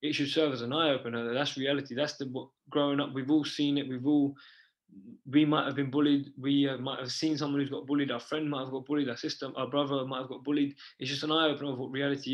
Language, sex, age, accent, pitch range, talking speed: English, male, 20-39, British, 130-150 Hz, 265 wpm